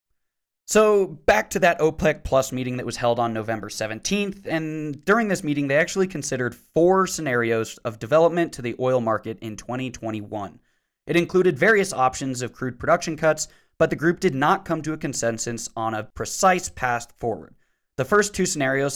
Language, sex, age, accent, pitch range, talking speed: English, male, 20-39, American, 120-165 Hz, 175 wpm